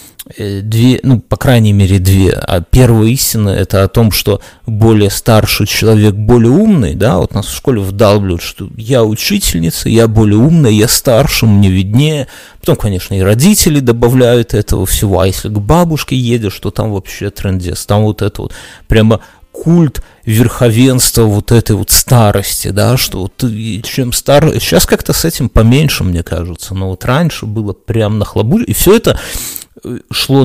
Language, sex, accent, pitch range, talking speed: Russian, male, native, 105-130 Hz, 165 wpm